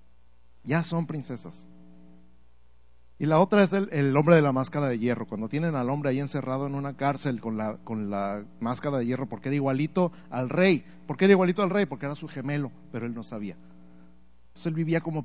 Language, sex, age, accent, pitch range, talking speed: Spanish, male, 50-69, Mexican, 95-155 Hz, 200 wpm